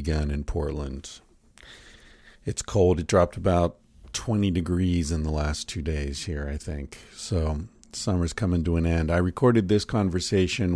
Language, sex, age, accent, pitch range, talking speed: English, male, 50-69, American, 85-110 Hz, 155 wpm